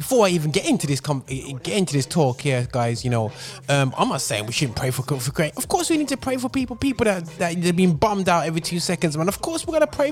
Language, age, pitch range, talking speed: English, 20-39, 130-170 Hz, 295 wpm